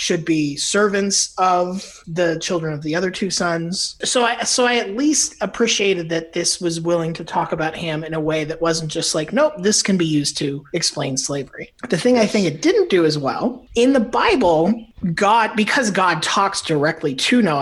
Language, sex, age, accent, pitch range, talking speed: English, male, 30-49, American, 160-215 Hz, 205 wpm